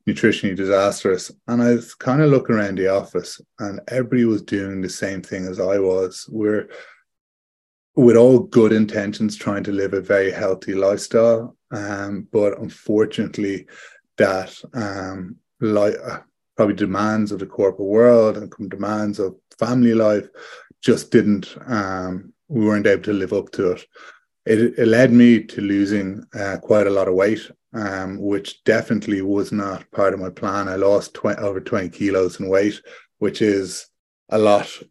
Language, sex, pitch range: English, male, 95-110 Hz